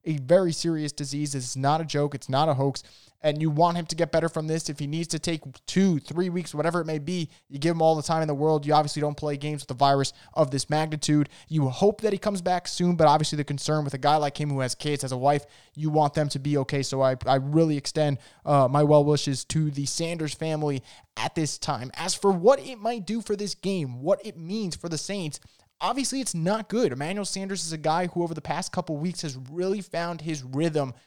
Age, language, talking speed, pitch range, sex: 20-39, English, 255 wpm, 150-185 Hz, male